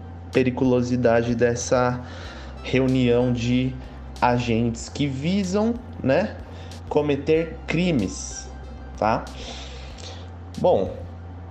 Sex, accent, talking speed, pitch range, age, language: male, Brazilian, 65 wpm, 85-140 Hz, 20-39, English